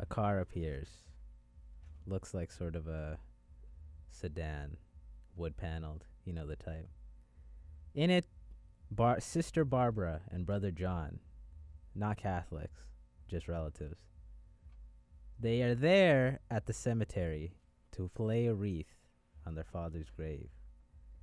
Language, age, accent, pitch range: English, 20-39, American, 75-105 Hz